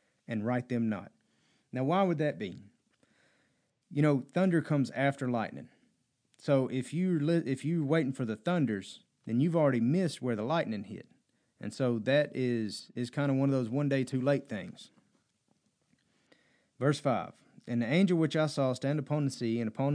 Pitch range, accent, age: 120-150 Hz, American, 30-49